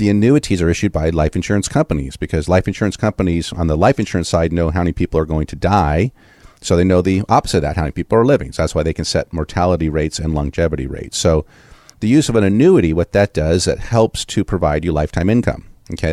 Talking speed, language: 240 wpm, English